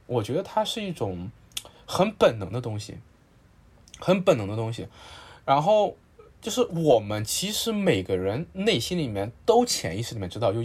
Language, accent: Chinese, native